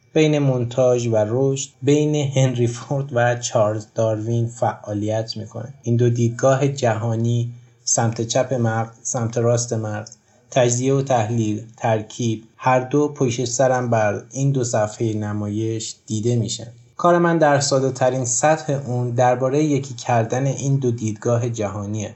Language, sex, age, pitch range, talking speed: Persian, male, 20-39, 110-135 Hz, 135 wpm